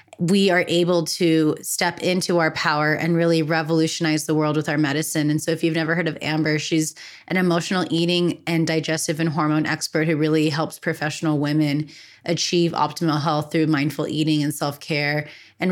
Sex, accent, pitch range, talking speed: female, American, 150-165 Hz, 180 wpm